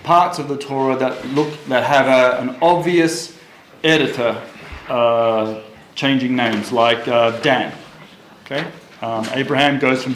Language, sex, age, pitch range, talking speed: English, male, 40-59, 130-165 Hz, 130 wpm